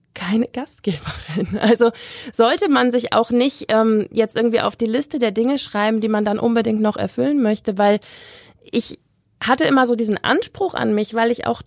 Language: German